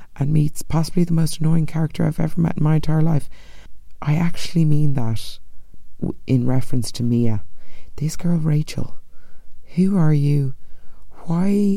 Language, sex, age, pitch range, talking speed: English, female, 30-49, 120-160 Hz, 150 wpm